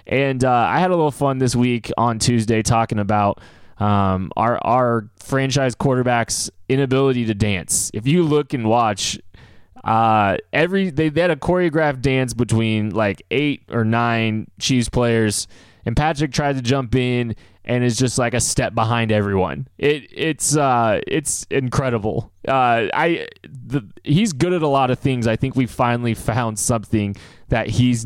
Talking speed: 165 wpm